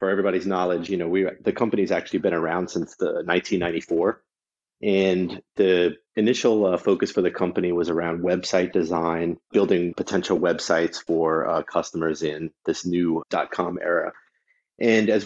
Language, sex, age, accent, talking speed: English, male, 30-49, American, 155 wpm